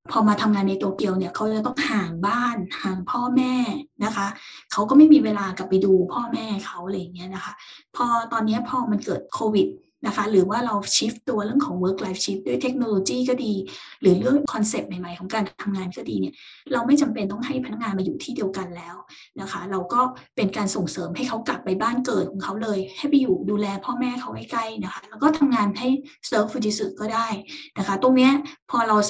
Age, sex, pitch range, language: 20-39, female, 195-255 Hz, Thai